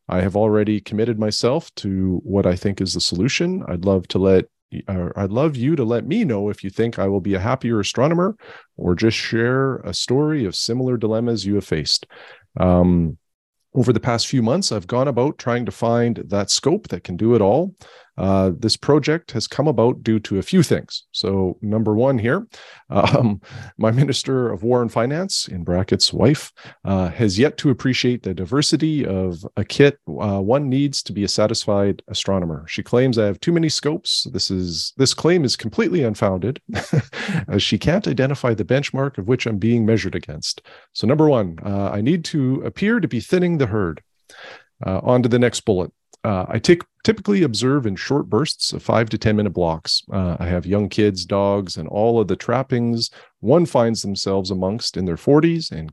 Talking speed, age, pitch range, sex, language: 195 wpm, 40-59, 95-130 Hz, male, English